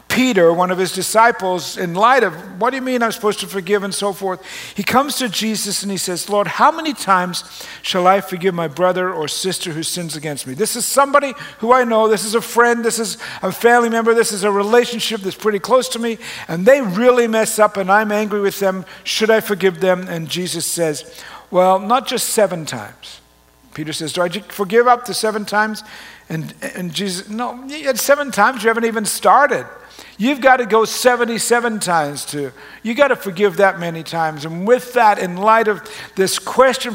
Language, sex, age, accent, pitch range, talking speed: English, male, 60-79, American, 165-225 Hz, 210 wpm